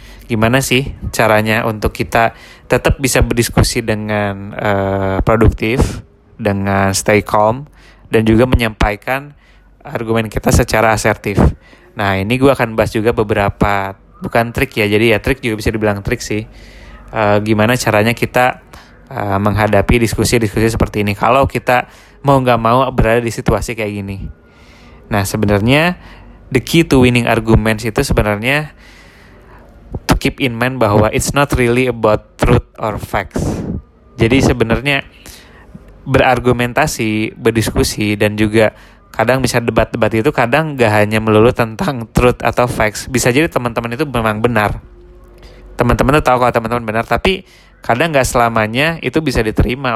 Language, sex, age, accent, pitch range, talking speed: Indonesian, male, 20-39, native, 105-125 Hz, 140 wpm